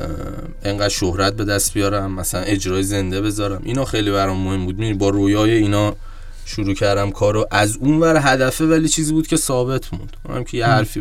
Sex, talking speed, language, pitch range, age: male, 185 wpm, Persian, 95-115 Hz, 20-39